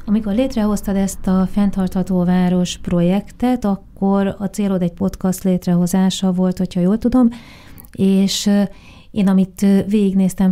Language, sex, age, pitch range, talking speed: Hungarian, female, 30-49, 180-210 Hz, 120 wpm